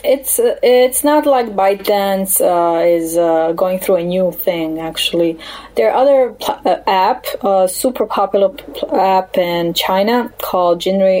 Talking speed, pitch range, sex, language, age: 150 wpm, 180-230 Hz, female, English, 20-39